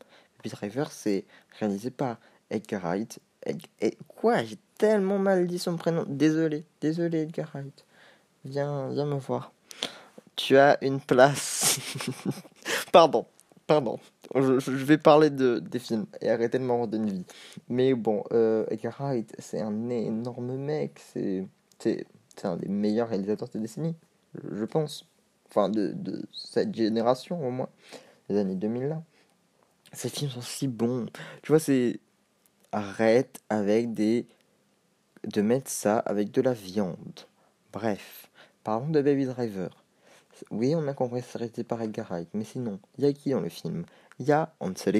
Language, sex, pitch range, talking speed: French, male, 110-150 Hz, 155 wpm